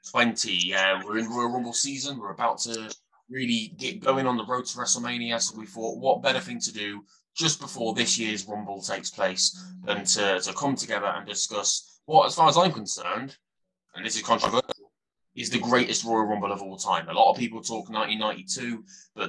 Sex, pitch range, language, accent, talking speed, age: male, 100-125 Hz, English, British, 200 wpm, 20-39